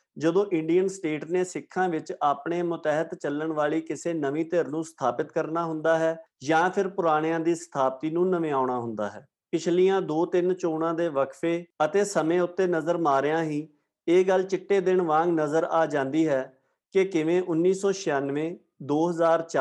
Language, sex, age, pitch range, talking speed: Punjabi, male, 50-69, 150-185 Hz, 155 wpm